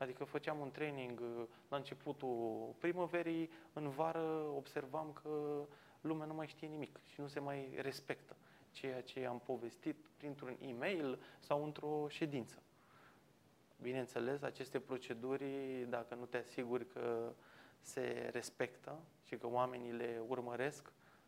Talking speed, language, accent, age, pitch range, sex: 125 wpm, Romanian, native, 20-39, 125-155 Hz, male